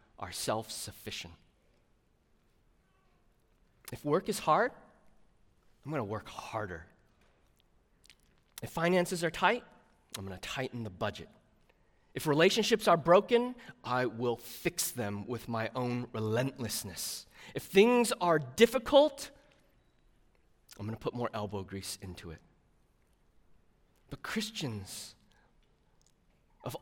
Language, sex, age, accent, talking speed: English, male, 30-49, American, 110 wpm